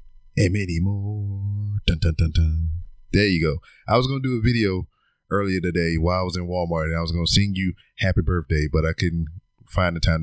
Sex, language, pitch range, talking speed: male, English, 80-100 Hz, 230 wpm